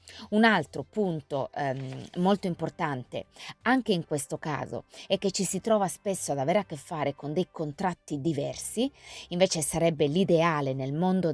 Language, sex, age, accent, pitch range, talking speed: Italian, female, 30-49, native, 140-185 Hz, 160 wpm